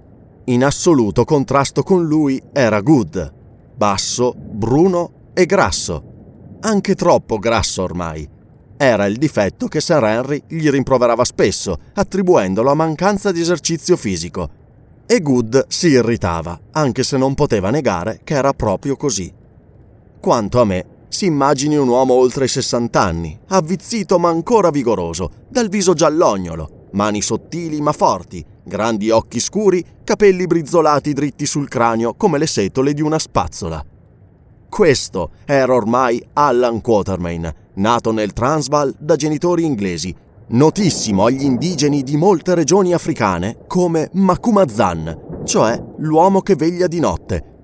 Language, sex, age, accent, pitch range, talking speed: Italian, male, 30-49, native, 110-160 Hz, 130 wpm